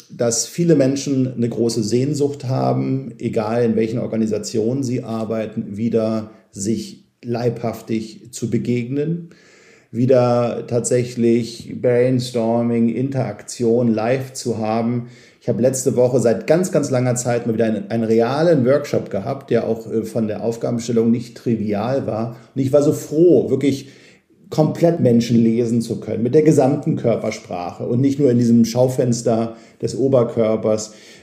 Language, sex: German, male